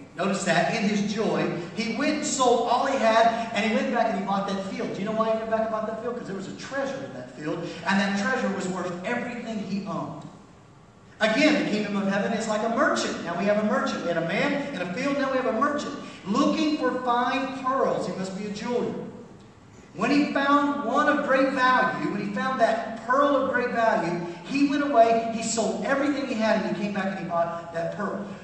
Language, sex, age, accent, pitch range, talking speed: English, male, 40-59, American, 200-250 Hz, 245 wpm